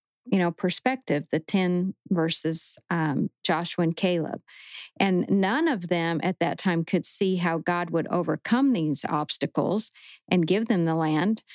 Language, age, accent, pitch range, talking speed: English, 50-69, American, 165-215 Hz, 155 wpm